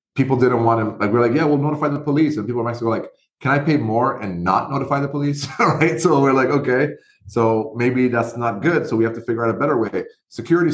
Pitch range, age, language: 110-140 Hz, 30-49, English